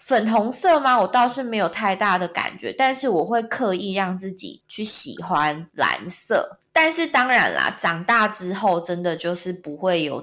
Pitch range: 165-215 Hz